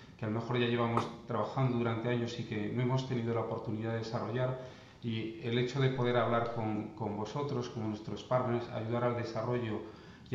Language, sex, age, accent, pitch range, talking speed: Spanish, male, 40-59, Spanish, 115-130 Hz, 195 wpm